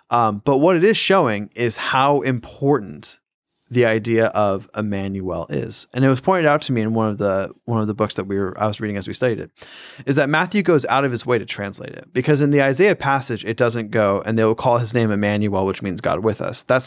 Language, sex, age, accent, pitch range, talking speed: English, male, 20-39, American, 105-130 Hz, 255 wpm